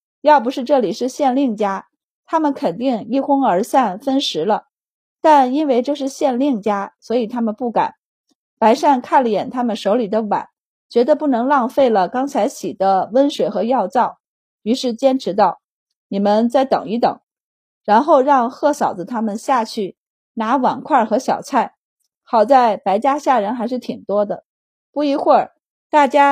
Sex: female